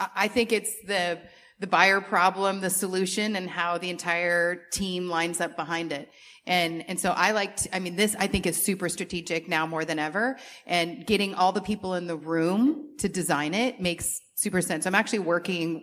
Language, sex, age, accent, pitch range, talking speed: English, female, 30-49, American, 165-195 Hz, 205 wpm